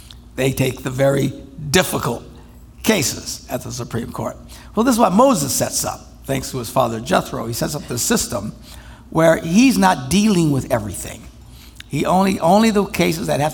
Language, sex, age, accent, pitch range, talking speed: English, male, 60-79, American, 115-155 Hz, 175 wpm